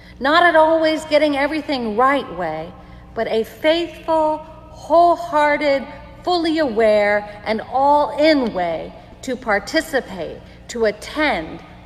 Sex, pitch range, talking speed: female, 195-270 Hz, 100 wpm